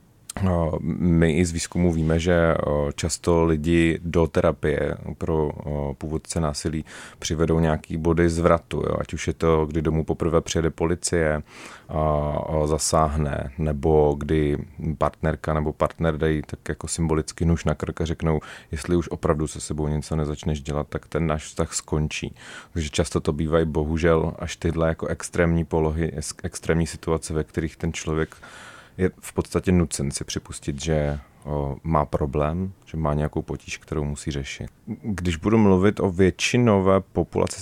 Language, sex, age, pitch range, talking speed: Czech, male, 30-49, 75-85 Hz, 150 wpm